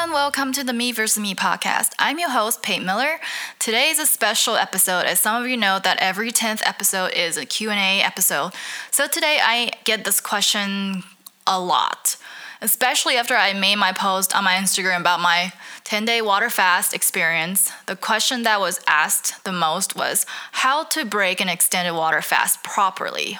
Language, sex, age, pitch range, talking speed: English, female, 10-29, 180-225 Hz, 185 wpm